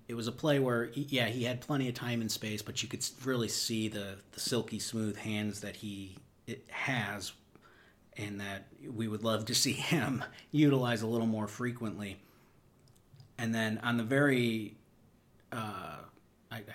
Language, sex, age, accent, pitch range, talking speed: English, male, 40-59, American, 105-120 Hz, 165 wpm